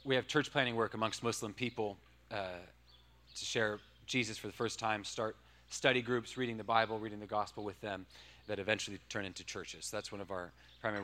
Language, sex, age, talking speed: English, male, 30-49, 200 wpm